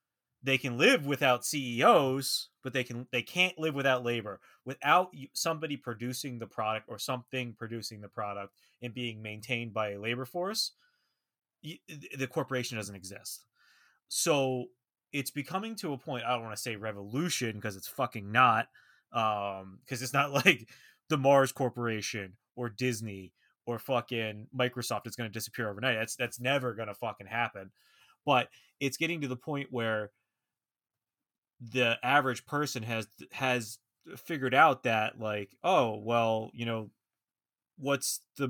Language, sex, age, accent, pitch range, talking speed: English, male, 20-39, American, 110-135 Hz, 150 wpm